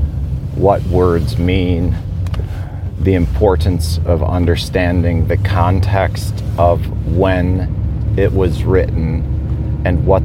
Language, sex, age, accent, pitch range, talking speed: English, male, 40-59, American, 75-90 Hz, 95 wpm